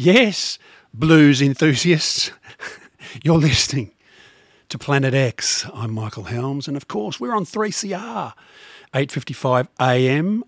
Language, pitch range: English, 115-150 Hz